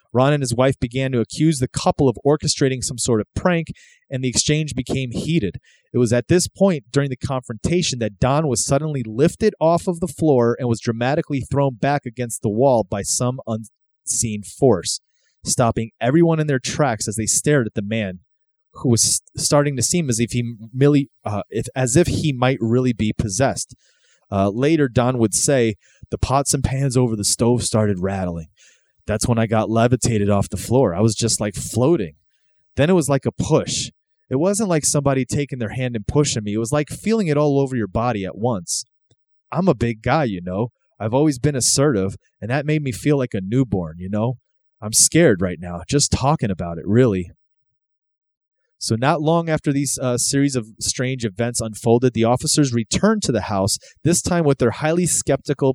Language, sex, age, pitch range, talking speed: English, male, 30-49, 110-145 Hz, 200 wpm